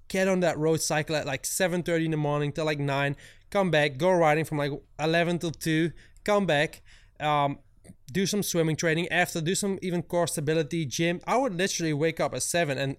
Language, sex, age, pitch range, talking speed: English, male, 20-39, 135-170 Hz, 215 wpm